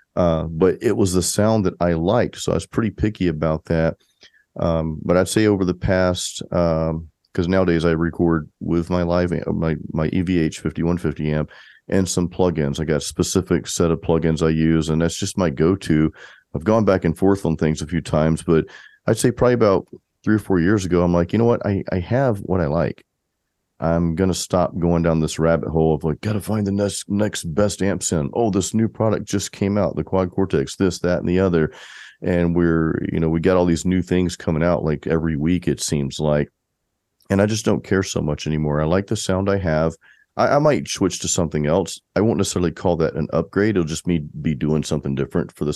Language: English